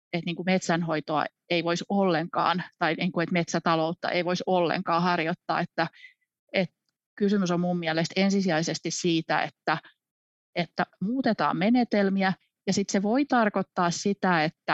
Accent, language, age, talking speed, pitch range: native, Finnish, 30-49, 115 wpm, 170-200 Hz